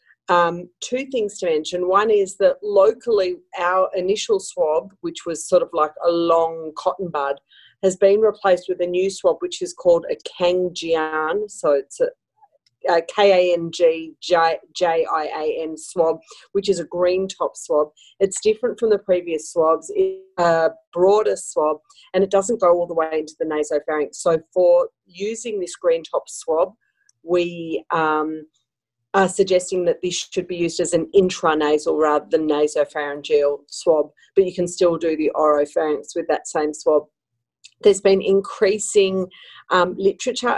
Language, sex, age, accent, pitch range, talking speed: English, female, 40-59, Australian, 160-215 Hz, 155 wpm